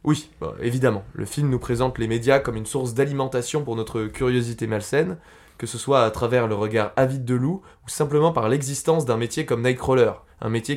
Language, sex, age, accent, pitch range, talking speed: French, male, 20-39, French, 115-150 Hz, 205 wpm